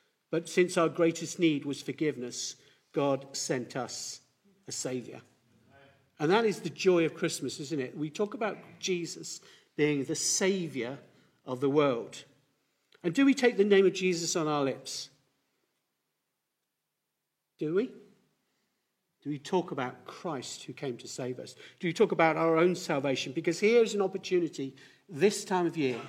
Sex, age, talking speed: male, 50-69, 160 wpm